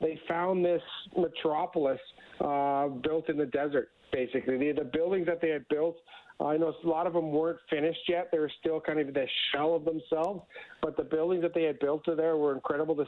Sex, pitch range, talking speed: male, 145-180 Hz, 215 wpm